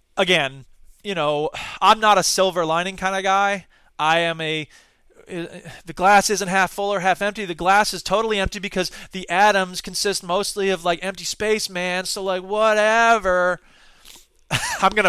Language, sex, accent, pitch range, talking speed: English, male, American, 175-215 Hz, 165 wpm